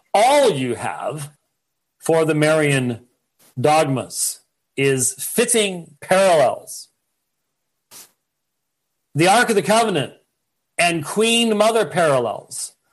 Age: 40-59